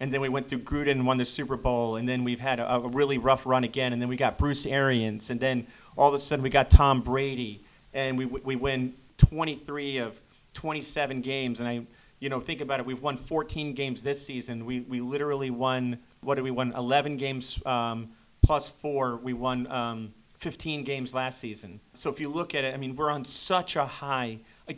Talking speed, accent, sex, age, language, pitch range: 225 wpm, American, male, 40-59, English, 125-145 Hz